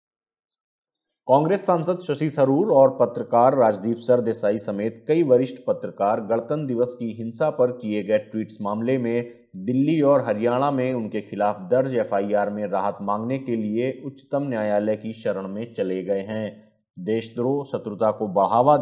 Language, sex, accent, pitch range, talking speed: Hindi, male, native, 105-135 Hz, 150 wpm